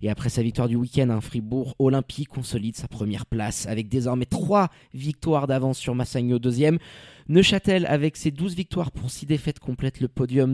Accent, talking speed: French, 175 wpm